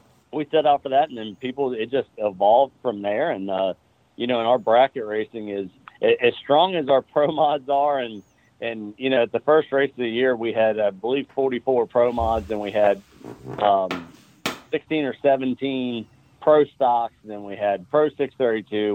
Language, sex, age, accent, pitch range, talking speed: English, male, 40-59, American, 105-130 Hz, 195 wpm